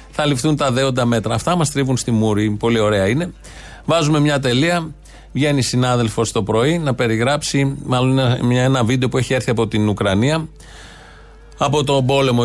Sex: male